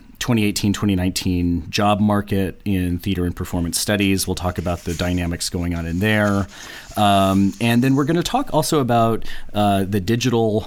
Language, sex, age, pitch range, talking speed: English, male, 30-49, 95-110 Hz, 155 wpm